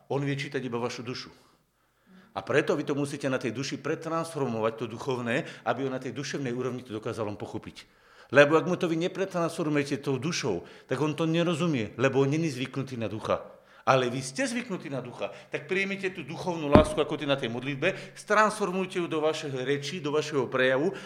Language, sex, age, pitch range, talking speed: Slovak, male, 50-69, 125-155 Hz, 190 wpm